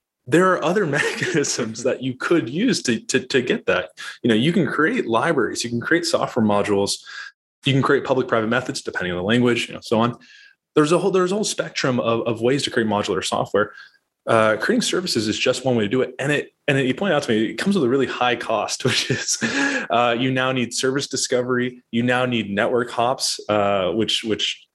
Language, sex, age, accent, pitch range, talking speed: English, male, 20-39, American, 110-145 Hz, 230 wpm